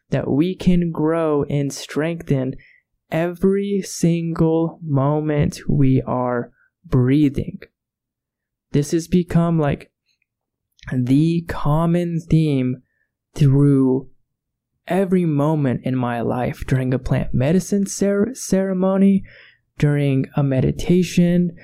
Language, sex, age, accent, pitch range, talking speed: English, male, 20-39, American, 135-170 Hz, 90 wpm